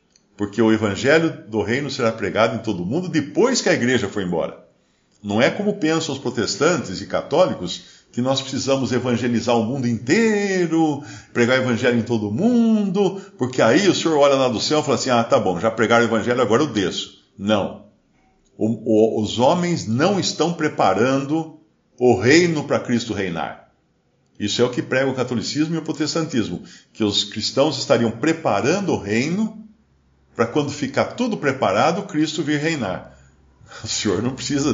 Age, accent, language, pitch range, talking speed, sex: 50-69, Brazilian, Portuguese, 110-160 Hz, 170 wpm, male